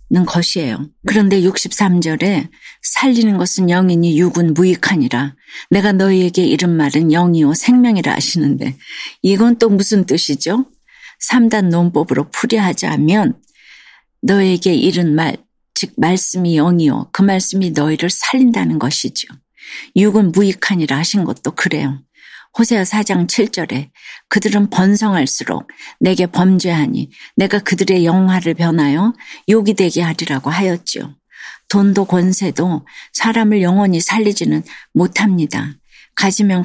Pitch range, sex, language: 165-205 Hz, female, Korean